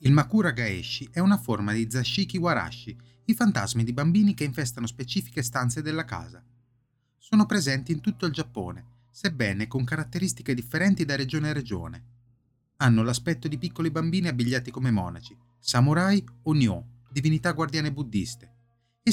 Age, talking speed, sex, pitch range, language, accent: 30-49, 150 wpm, male, 115-160 Hz, Italian, native